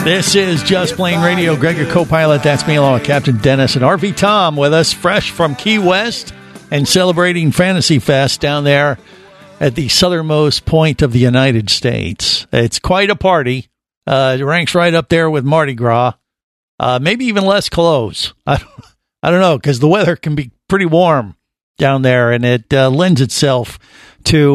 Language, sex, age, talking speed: English, male, 50-69, 180 wpm